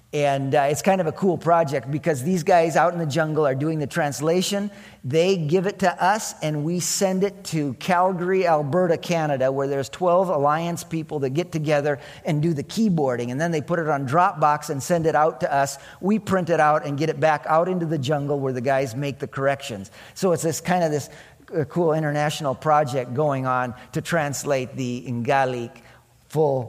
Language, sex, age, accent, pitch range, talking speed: English, male, 40-59, American, 135-180 Hz, 205 wpm